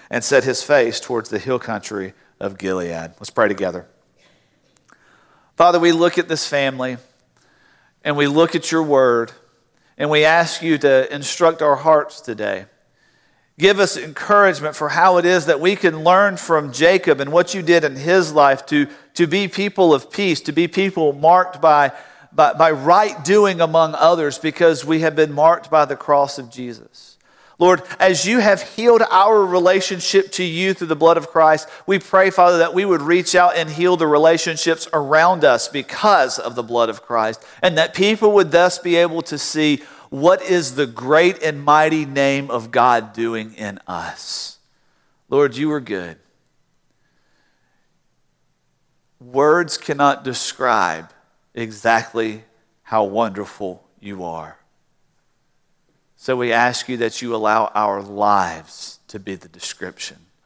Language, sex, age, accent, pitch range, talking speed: English, male, 50-69, American, 120-175 Hz, 160 wpm